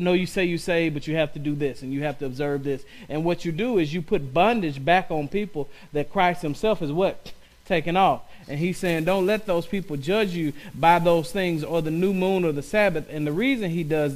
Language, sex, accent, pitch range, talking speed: English, male, American, 150-185 Hz, 250 wpm